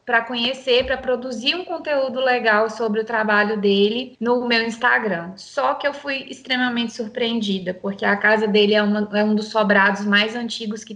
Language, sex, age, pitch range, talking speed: Portuguese, female, 20-39, 205-230 Hz, 175 wpm